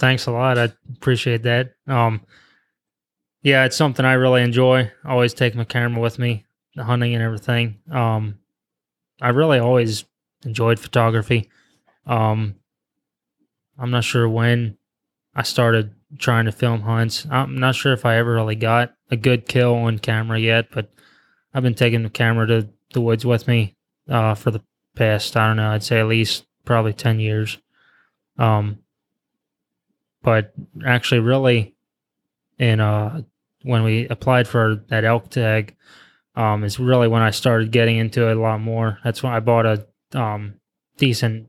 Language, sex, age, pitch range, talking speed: English, male, 20-39, 110-125 Hz, 160 wpm